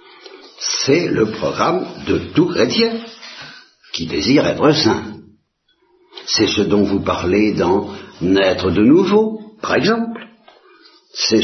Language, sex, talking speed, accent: Italian, male, 115 wpm, French